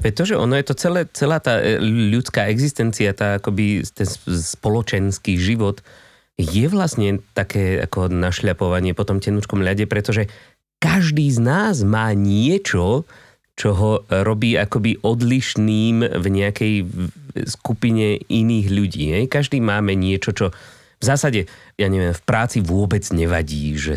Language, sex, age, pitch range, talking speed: Slovak, male, 30-49, 95-115 Hz, 135 wpm